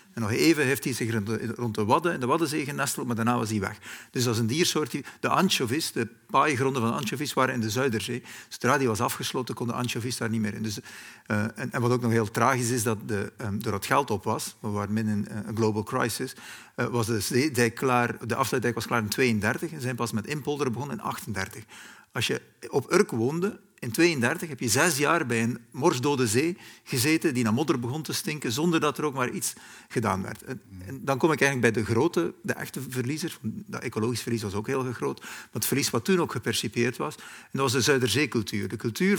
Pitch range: 115-140 Hz